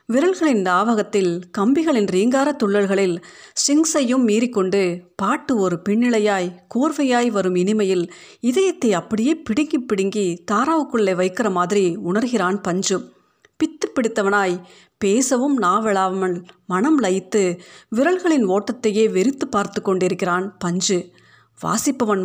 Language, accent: Tamil, native